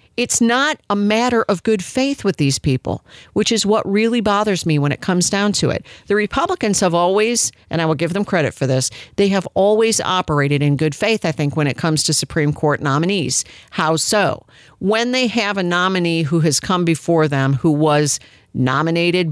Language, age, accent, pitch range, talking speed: English, 50-69, American, 150-210 Hz, 200 wpm